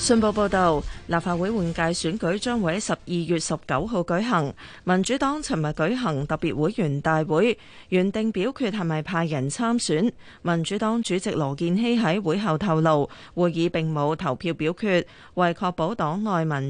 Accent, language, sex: native, Chinese, female